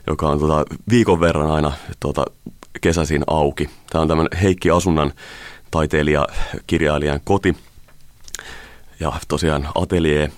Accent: native